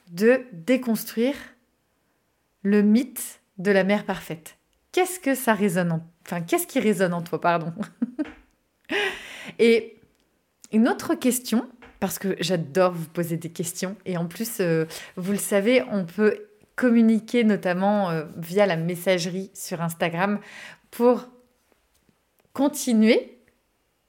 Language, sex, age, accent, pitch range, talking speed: French, female, 30-49, French, 190-245 Hz, 125 wpm